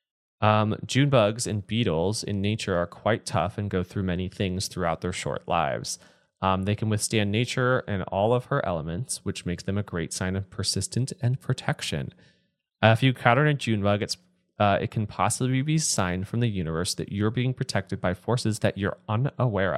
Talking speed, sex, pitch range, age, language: 195 wpm, male, 95-120 Hz, 20-39, English